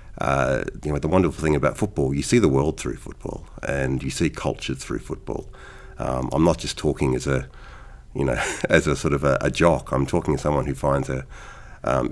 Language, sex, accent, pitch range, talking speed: English, male, Australian, 65-90 Hz, 220 wpm